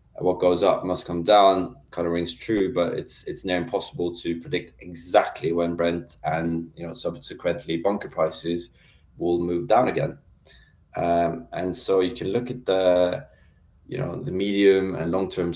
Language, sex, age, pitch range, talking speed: English, male, 20-39, 85-95 Hz, 170 wpm